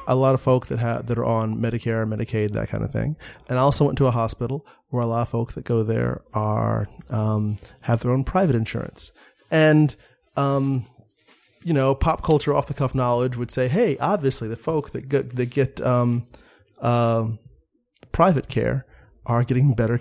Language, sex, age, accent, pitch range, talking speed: English, male, 30-49, American, 110-135 Hz, 190 wpm